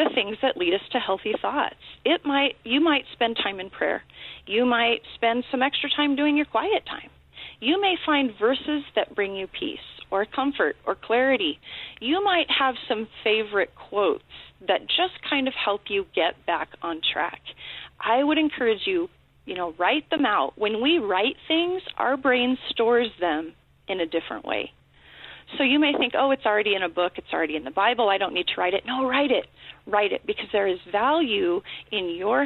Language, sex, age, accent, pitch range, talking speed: English, female, 30-49, American, 205-300 Hz, 200 wpm